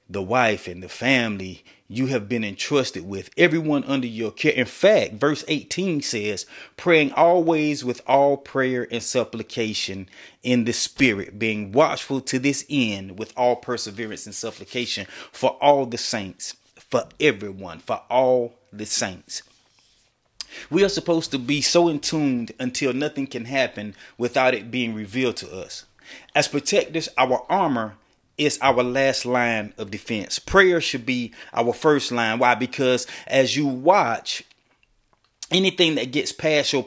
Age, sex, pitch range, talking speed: 30-49, male, 115-145 Hz, 150 wpm